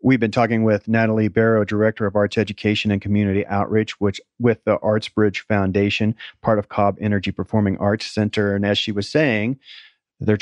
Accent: American